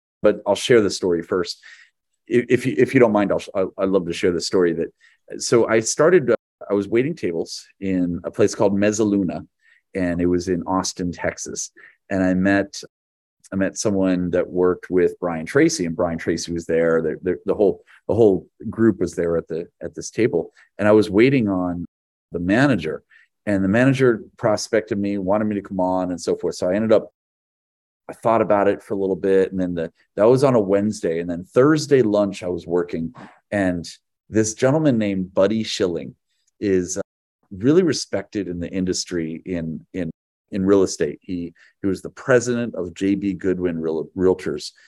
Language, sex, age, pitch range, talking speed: English, male, 30-49, 85-100 Hz, 190 wpm